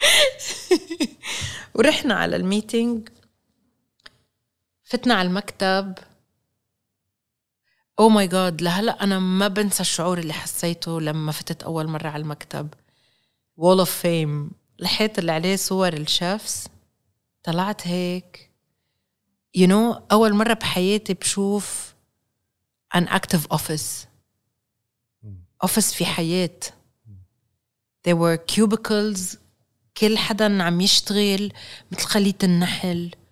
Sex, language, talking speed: female, Arabic, 100 wpm